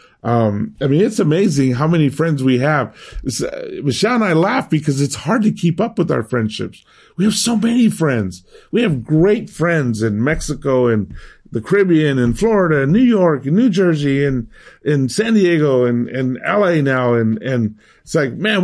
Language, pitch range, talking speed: English, 120-160 Hz, 190 wpm